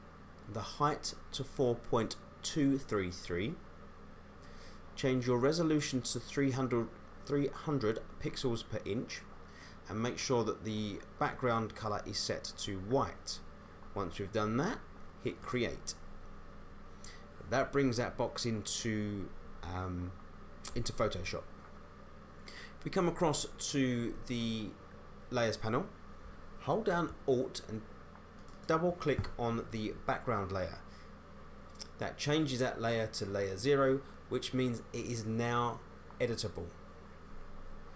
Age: 30-49